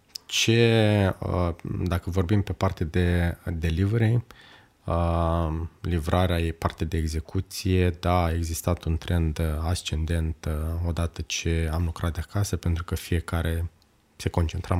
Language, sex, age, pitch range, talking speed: Romanian, male, 20-39, 85-95 Hz, 120 wpm